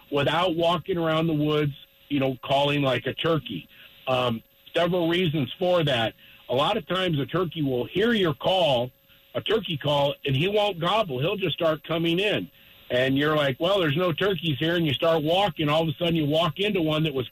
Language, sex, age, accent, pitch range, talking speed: English, male, 50-69, American, 140-180 Hz, 210 wpm